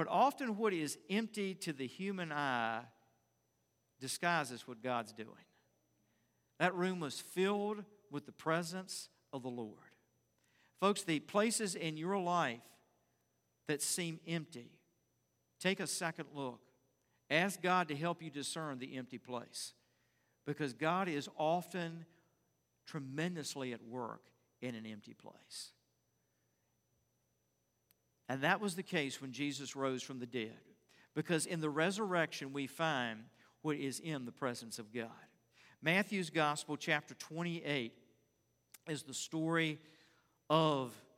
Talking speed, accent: 130 wpm, American